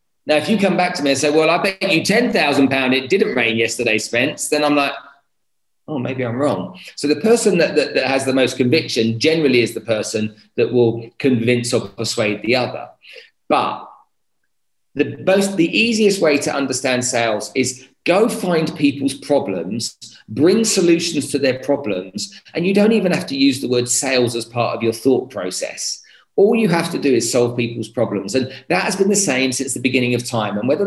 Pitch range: 120-170 Hz